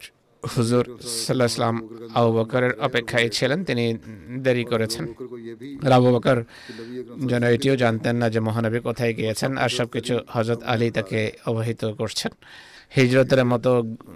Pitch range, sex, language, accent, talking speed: 115-125 Hz, male, Bengali, native, 55 wpm